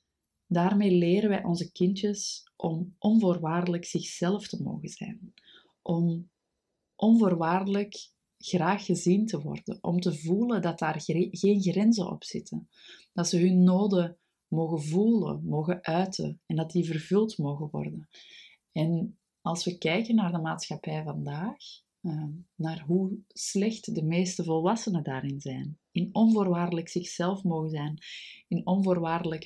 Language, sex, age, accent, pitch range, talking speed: Dutch, female, 30-49, Dutch, 165-195 Hz, 130 wpm